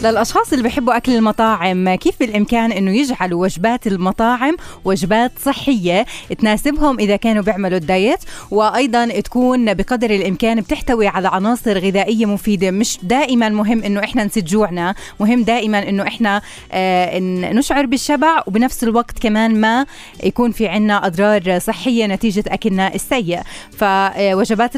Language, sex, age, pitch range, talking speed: Arabic, female, 20-39, 200-245 Hz, 125 wpm